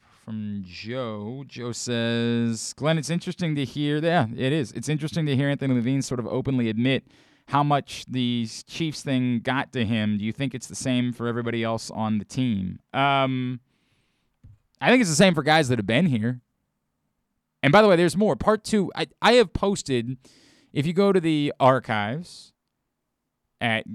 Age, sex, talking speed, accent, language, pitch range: 20-39, male, 185 wpm, American, English, 115-155 Hz